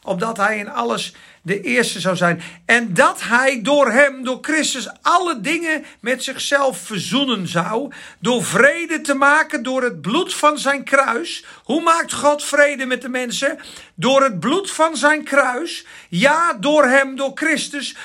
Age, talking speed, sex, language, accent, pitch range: 50-69, 165 wpm, male, Dutch, Dutch, 245-305 Hz